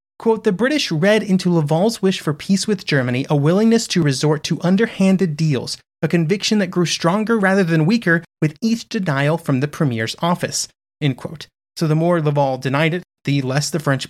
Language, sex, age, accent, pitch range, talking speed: English, male, 30-49, American, 145-190 Hz, 185 wpm